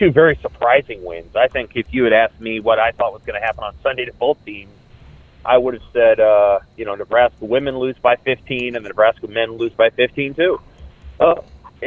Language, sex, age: English, male, 30-49